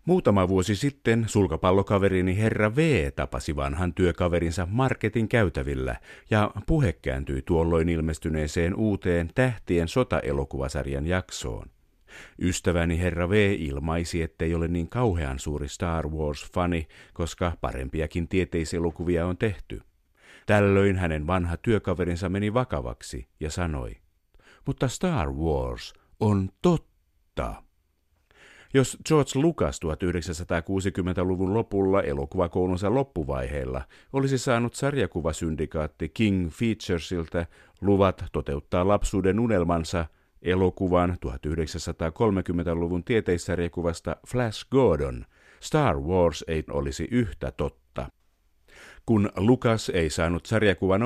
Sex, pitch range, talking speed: male, 80-105 Hz, 95 wpm